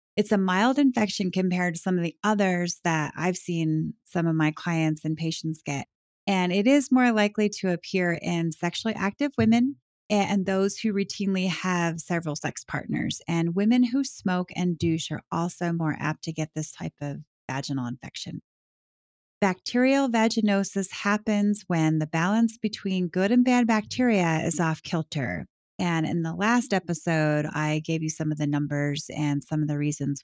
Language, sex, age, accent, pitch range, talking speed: English, female, 30-49, American, 160-210 Hz, 175 wpm